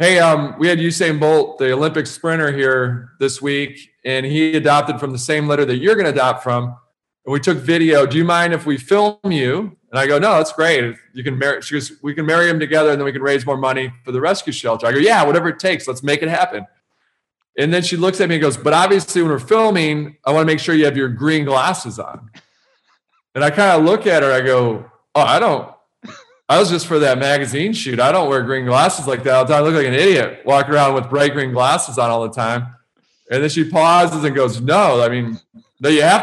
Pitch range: 130-165 Hz